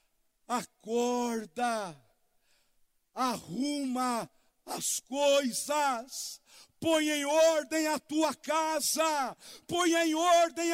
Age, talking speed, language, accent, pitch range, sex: 60-79, 75 wpm, Portuguese, Brazilian, 245-330 Hz, male